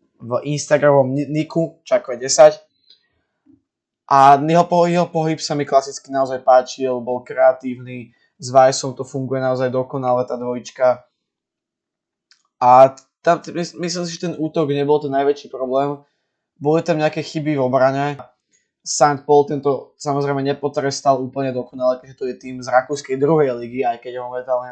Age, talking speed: 20-39, 145 wpm